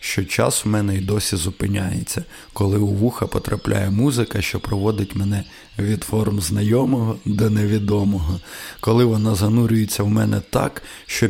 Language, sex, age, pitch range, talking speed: Ukrainian, male, 20-39, 100-115 Hz, 145 wpm